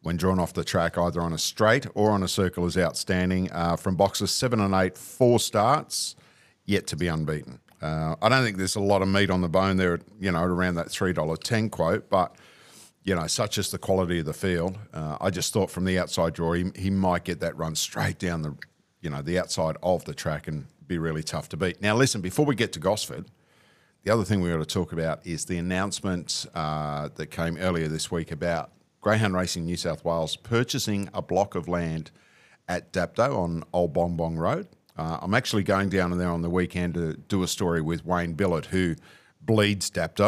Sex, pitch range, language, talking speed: male, 85-100 Hz, English, 220 wpm